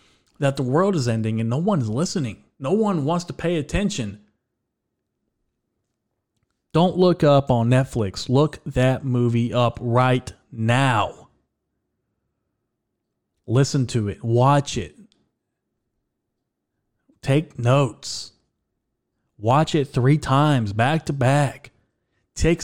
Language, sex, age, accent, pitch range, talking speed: English, male, 30-49, American, 115-150 Hz, 110 wpm